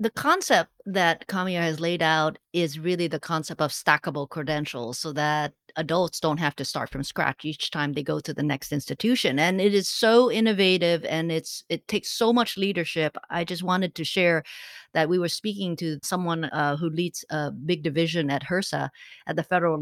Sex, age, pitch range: female, 50-69, 155-190 Hz